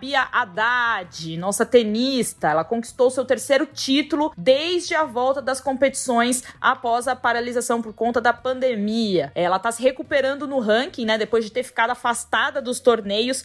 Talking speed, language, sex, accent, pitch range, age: 155 wpm, Portuguese, female, Brazilian, 215-275 Hz, 20-39